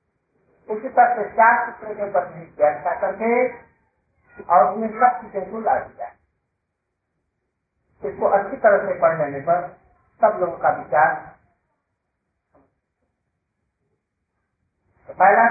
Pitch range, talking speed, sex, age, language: 160-220 Hz, 90 wpm, male, 50-69, Hindi